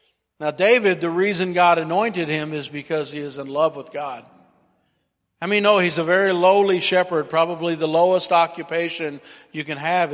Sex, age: male, 50-69